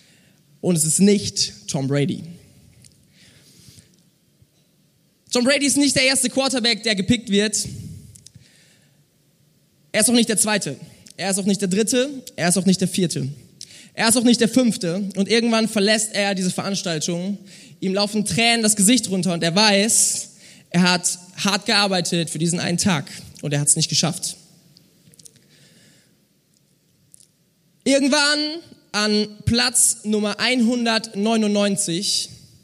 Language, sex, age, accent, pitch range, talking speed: German, male, 20-39, German, 175-235 Hz, 135 wpm